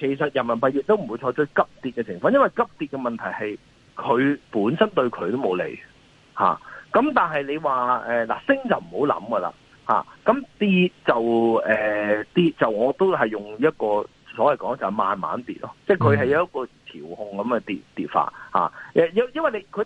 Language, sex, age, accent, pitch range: Chinese, male, 30-49, native, 120-195 Hz